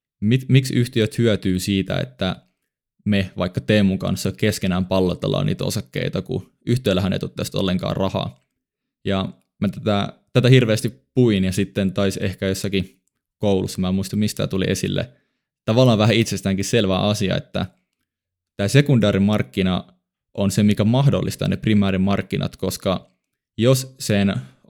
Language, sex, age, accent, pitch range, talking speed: Finnish, male, 20-39, native, 95-110 Hz, 135 wpm